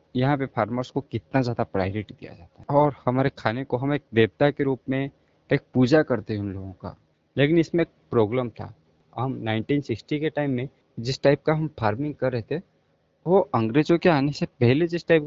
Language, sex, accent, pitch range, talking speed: Hindi, male, native, 110-140 Hz, 205 wpm